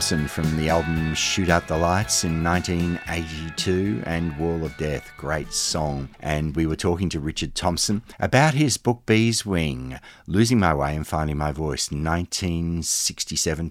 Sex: male